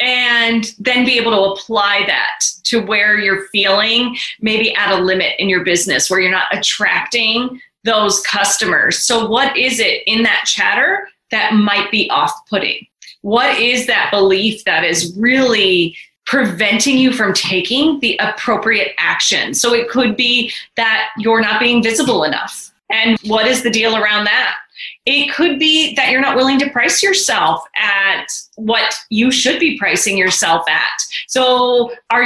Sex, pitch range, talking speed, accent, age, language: female, 210-250 Hz, 160 wpm, American, 30-49, English